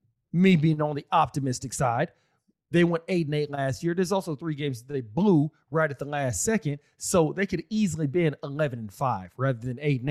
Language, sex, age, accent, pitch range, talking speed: English, male, 40-59, American, 140-180 Hz, 225 wpm